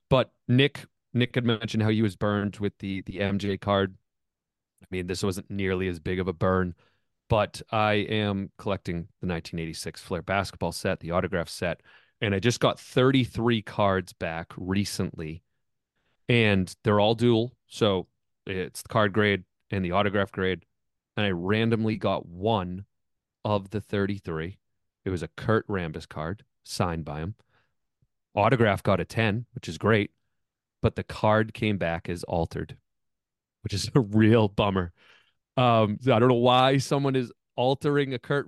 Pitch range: 95-115 Hz